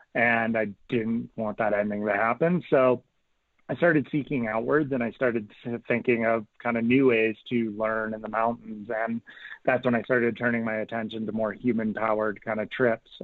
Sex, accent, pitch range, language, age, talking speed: male, American, 110-120 Hz, English, 20-39, 190 wpm